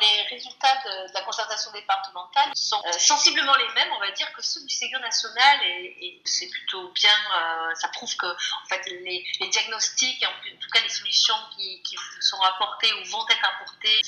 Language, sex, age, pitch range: French, female, 30-49, 180-255 Hz